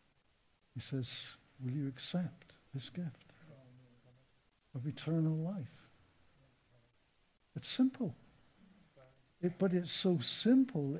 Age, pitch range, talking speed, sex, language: 60-79, 130-180 Hz, 95 wpm, male, English